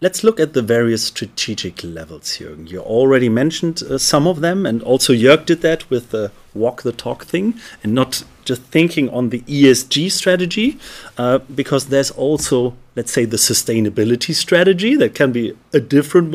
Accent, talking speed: German, 175 wpm